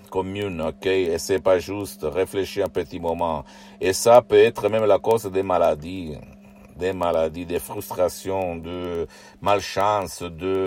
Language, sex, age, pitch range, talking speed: Italian, male, 60-79, 85-100 Hz, 145 wpm